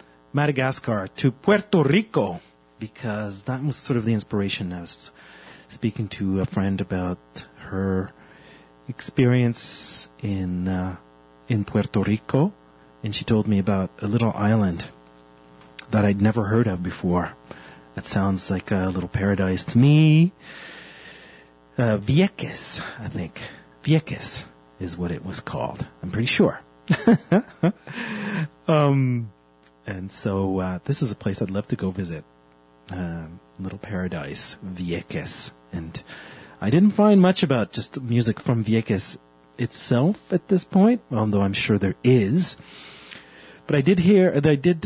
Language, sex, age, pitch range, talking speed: English, male, 30-49, 90-130 Hz, 140 wpm